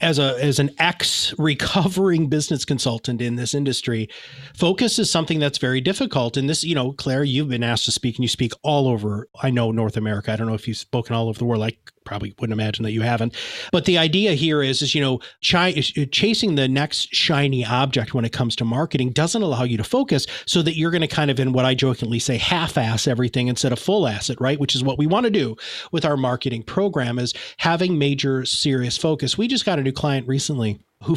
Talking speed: 230 wpm